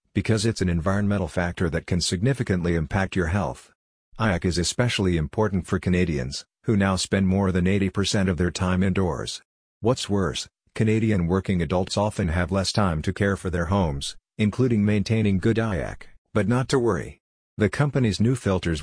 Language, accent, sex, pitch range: English, American, male, 90-105 Hz